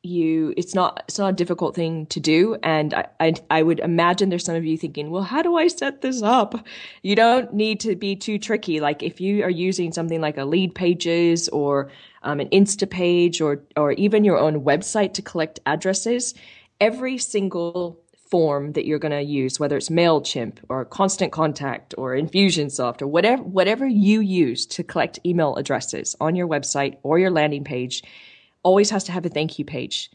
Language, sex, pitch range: English, female, 150-190 Hz